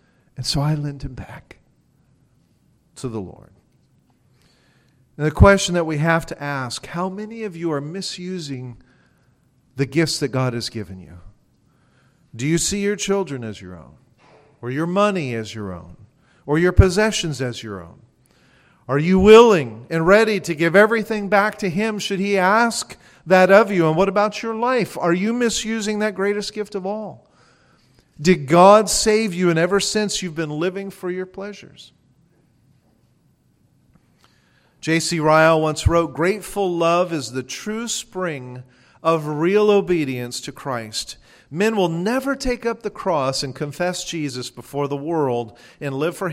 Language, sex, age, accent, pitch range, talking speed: English, male, 40-59, American, 130-195 Hz, 160 wpm